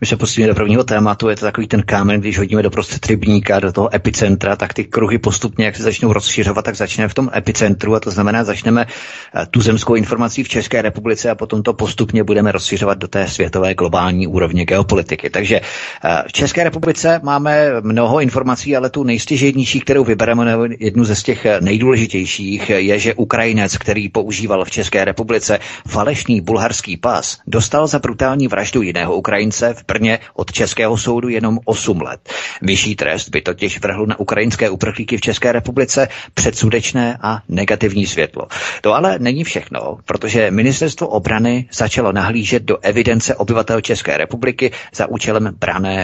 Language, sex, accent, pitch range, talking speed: Czech, male, native, 105-120 Hz, 165 wpm